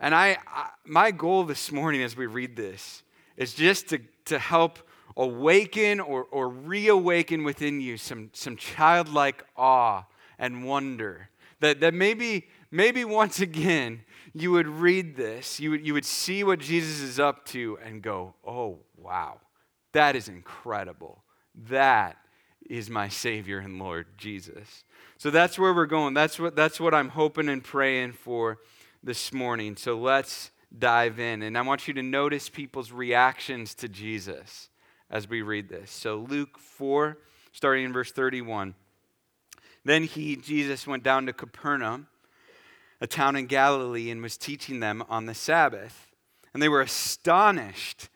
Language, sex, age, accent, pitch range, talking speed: English, male, 30-49, American, 120-155 Hz, 155 wpm